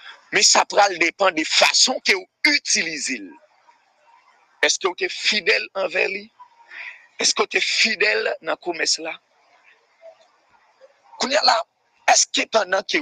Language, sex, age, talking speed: English, male, 50-69, 125 wpm